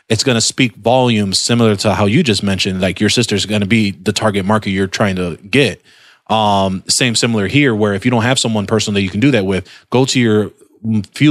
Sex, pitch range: male, 105-120 Hz